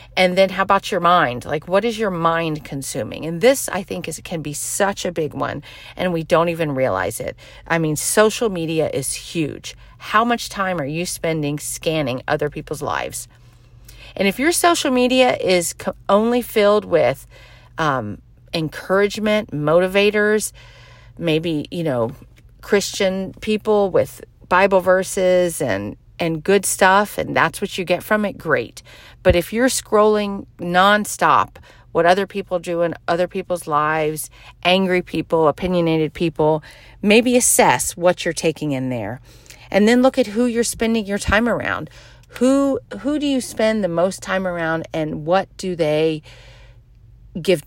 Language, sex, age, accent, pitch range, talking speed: English, female, 40-59, American, 140-200 Hz, 160 wpm